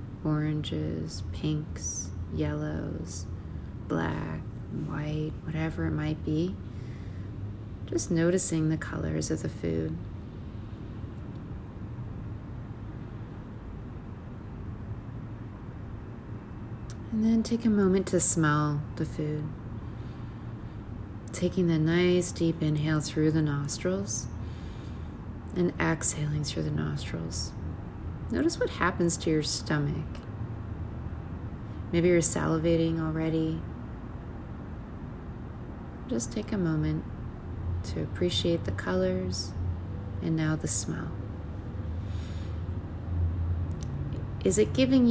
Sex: female